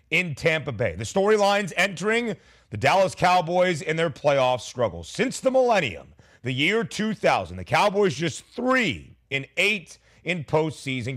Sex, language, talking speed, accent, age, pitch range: male, English, 145 wpm, American, 30-49, 130-180 Hz